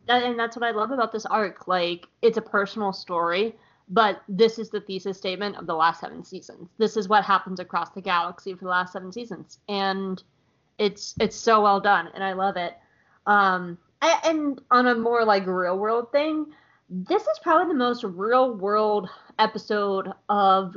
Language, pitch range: English, 185-220 Hz